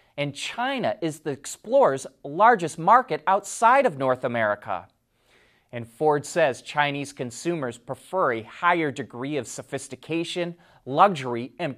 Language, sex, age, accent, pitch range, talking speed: English, male, 30-49, American, 135-200 Hz, 120 wpm